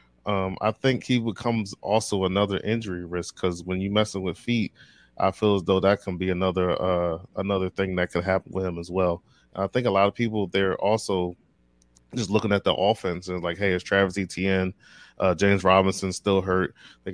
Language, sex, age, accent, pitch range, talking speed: English, male, 20-39, American, 90-100 Hz, 210 wpm